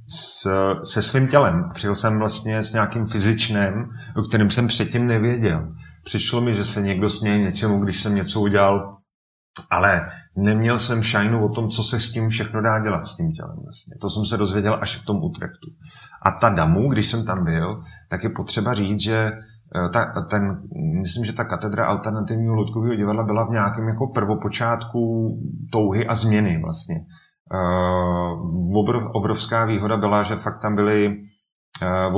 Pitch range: 100-115 Hz